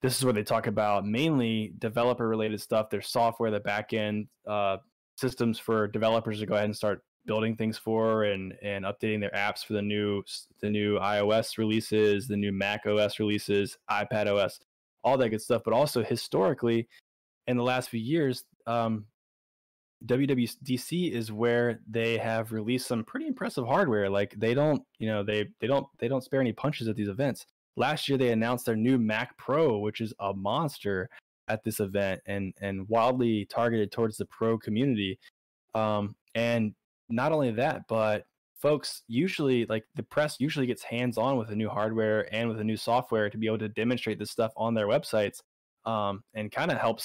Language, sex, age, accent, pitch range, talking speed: English, male, 10-29, American, 105-125 Hz, 185 wpm